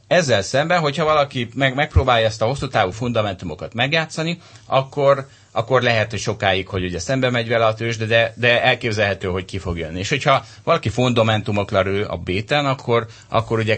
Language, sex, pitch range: Hungarian, male, 95-120 Hz